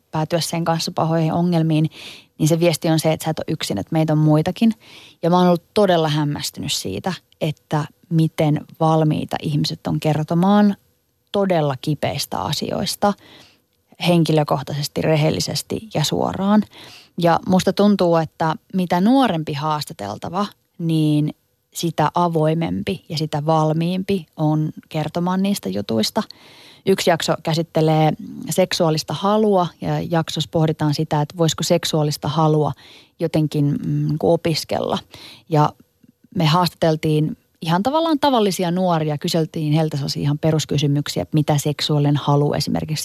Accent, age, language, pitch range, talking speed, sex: native, 20-39, Finnish, 150-180 Hz, 125 wpm, female